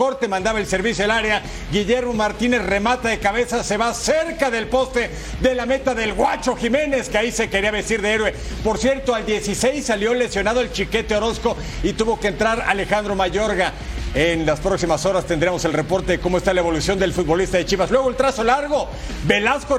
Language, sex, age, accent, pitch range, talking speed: Spanish, male, 50-69, Mexican, 210-265 Hz, 195 wpm